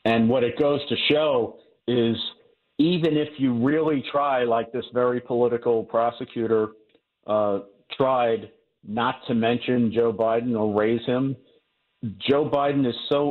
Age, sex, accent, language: 50-69, male, American, English